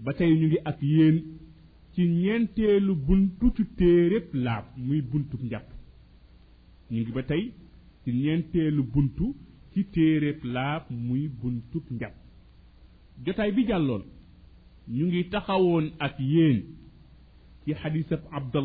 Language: French